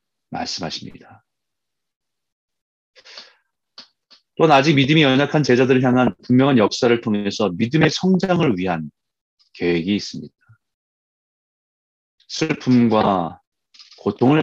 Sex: male